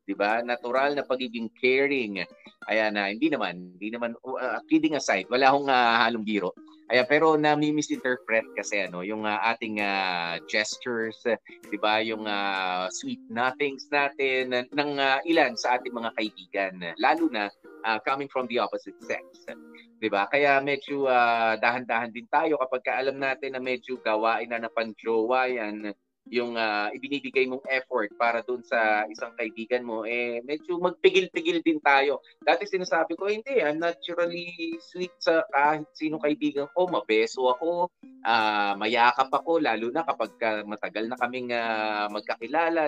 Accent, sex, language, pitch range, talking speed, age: native, male, Filipino, 110-150 Hz, 155 wpm, 30-49